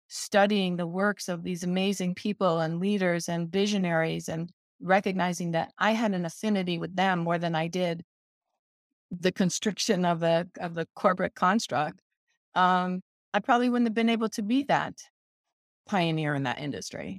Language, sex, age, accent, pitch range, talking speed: English, female, 30-49, American, 165-200 Hz, 160 wpm